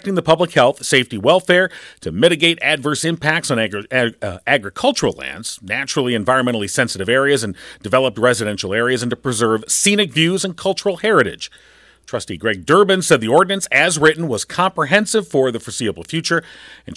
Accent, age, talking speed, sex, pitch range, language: American, 40-59, 155 wpm, male, 120-170 Hz, English